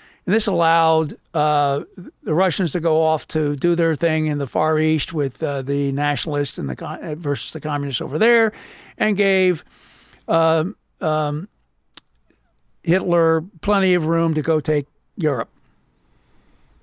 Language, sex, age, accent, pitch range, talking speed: English, male, 60-79, American, 155-185 Hz, 145 wpm